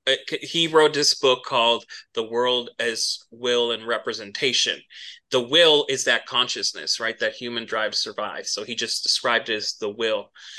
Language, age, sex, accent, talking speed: English, 30-49, male, American, 165 wpm